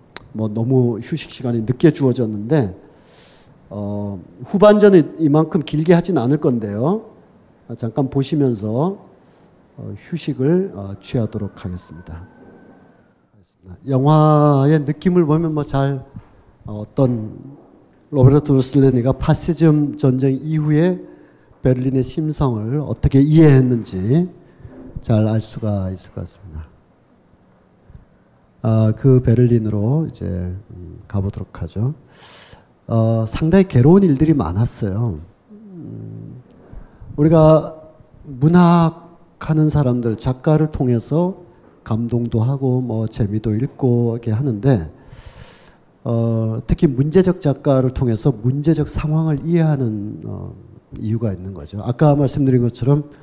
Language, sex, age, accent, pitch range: Korean, male, 50-69, native, 110-155 Hz